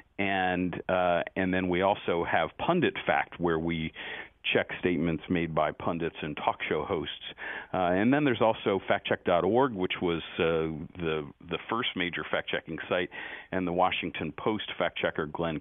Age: 50-69